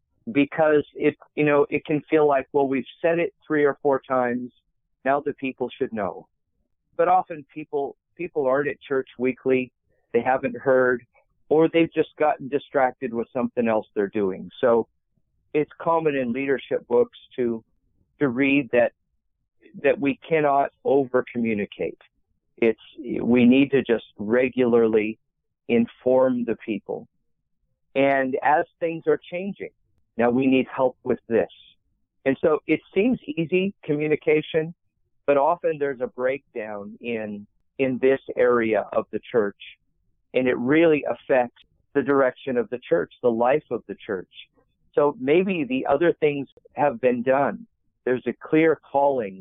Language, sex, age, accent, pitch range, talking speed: English, male, 50-69, American, 120-150 Hz, 145 wpm